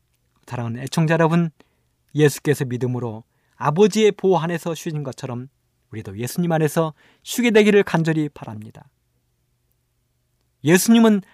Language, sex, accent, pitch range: Korean, male, native, 110-170 Hz